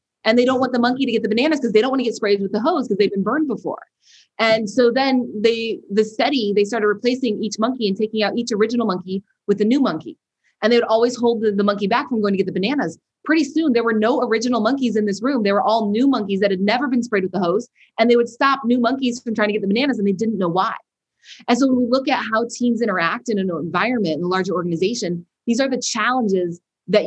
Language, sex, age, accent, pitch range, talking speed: English, female, 20-39, American, 195-240 Hz, 270 wpm